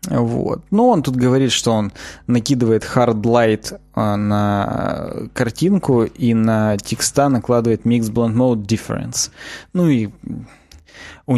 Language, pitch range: Russian, 110-135 Hz